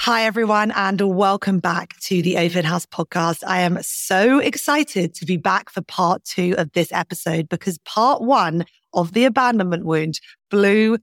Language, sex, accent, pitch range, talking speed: English, female, British, 170-210 Hz, 170 wpm